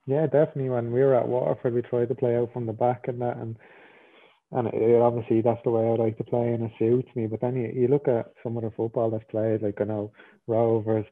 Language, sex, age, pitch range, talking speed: English, male, 20-39, 110-115 Hz, 265 wpm